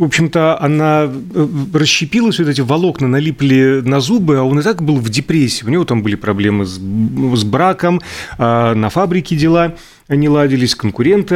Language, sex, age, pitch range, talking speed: Russian, male, 30-49, 120-170 Hz, 165 wpm